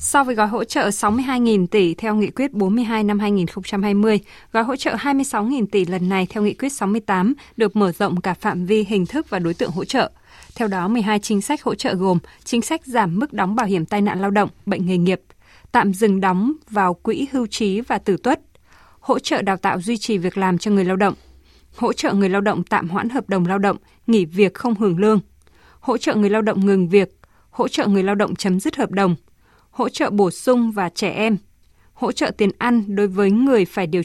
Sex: female